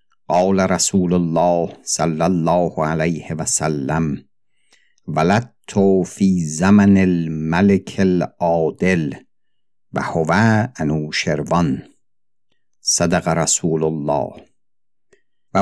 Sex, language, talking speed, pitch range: male, Persian, 75 wpm, 80-95 Hz